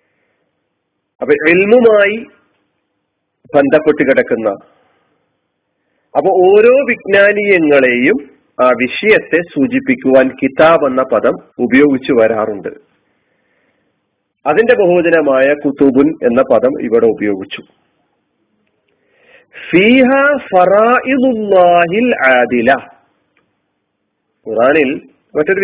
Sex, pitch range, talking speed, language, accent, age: male, 135-205 Hz, 55 wpm, Malayalam, native, 40-59